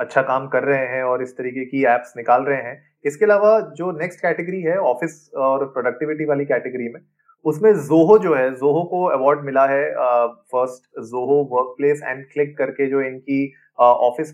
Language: Hindi